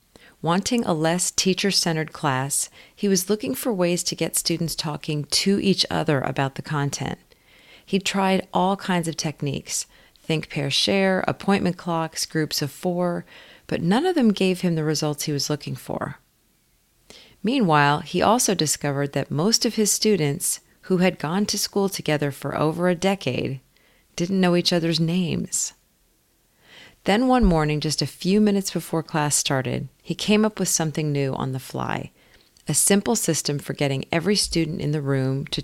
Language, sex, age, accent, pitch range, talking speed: English, female, 40-59, American, 145-185 Hz, 165 wpm